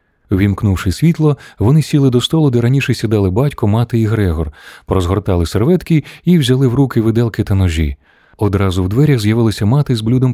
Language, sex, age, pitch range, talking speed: Ukrainian, male, 30-49, 95-130 Hz, 170 wpm